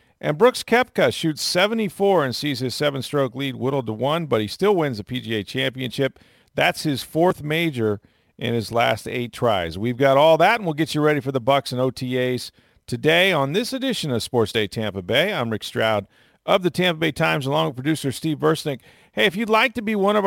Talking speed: 215 wpm